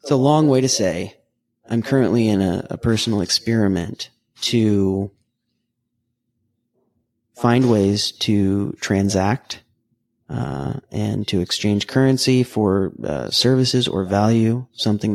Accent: American